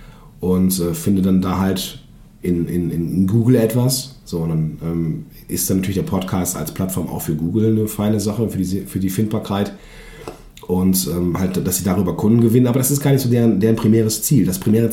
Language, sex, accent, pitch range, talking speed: German, male, German, 90-120 Hz, 205 wpm